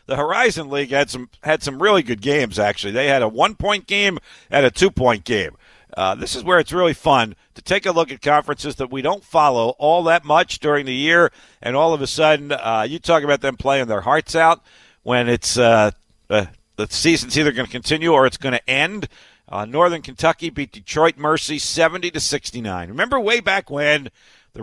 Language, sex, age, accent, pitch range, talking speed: English, male, 60-79, American, 115-155 Hz, 215 wpm